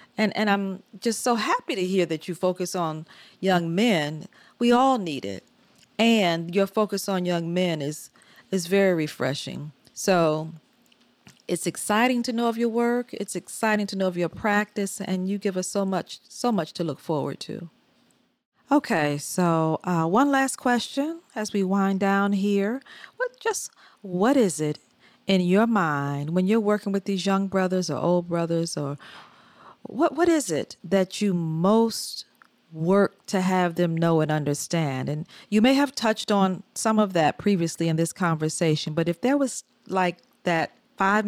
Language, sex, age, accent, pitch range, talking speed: English, female, 40-59, American, 175-225 Hz, 175 wpm